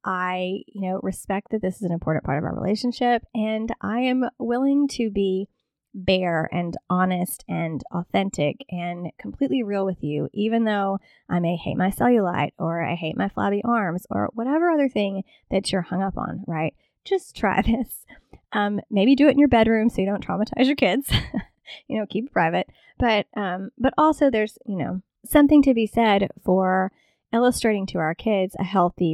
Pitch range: 185-245 Hz